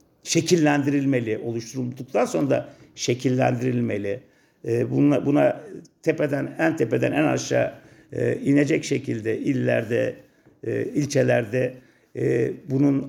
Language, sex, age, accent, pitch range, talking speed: Turkish, male, 50-69, native, 120-150 Hz, 80 wpm